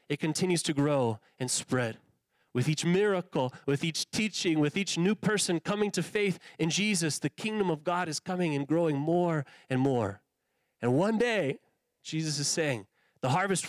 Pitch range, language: 150-205 Hz, English